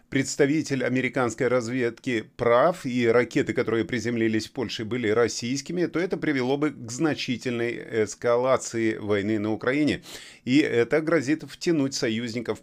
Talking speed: 130 wpm